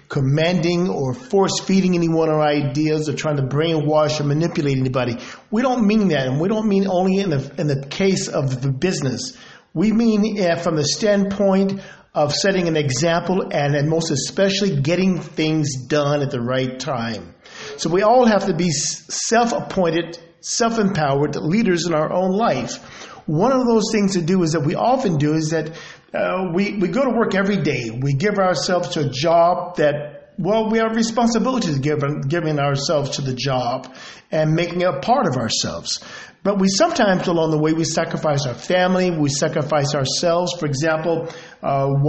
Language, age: English, 50-69